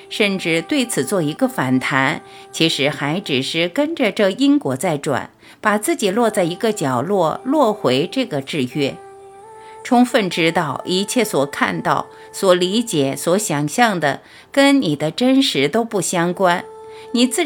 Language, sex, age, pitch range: Chinese, female, 50-69, 145-245 Hz